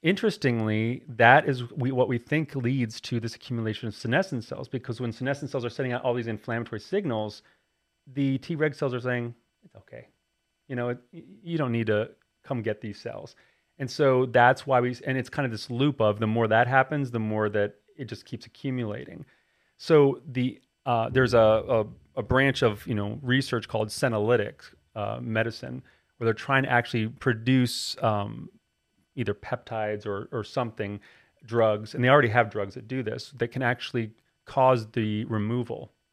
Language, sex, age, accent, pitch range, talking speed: English, male, 30-49, American, 110-130 Hz, 185 wpm